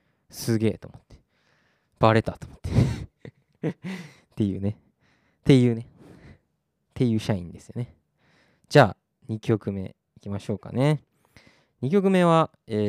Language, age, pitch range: Japanese, 20-39, 105-150 Hz